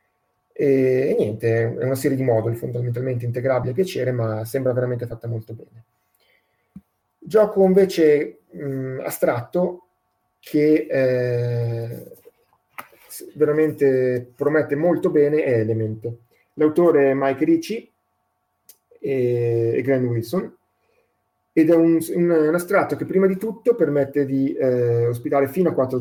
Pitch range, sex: 115-150 Hz, male